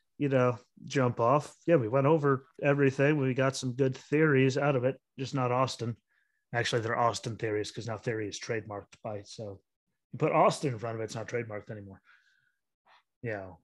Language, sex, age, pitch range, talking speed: English, male, 30-49, 115-135 Hz, 190 wpm